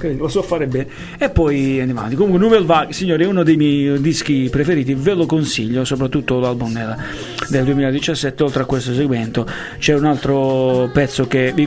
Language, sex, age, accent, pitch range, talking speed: Italian, male, 40-59, native, 125-160 Hz, 190 wpm